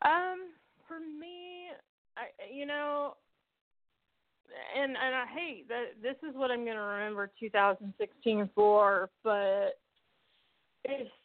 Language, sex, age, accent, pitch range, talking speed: English, female, 40-59, American, 195-265 Hz, 100 wpm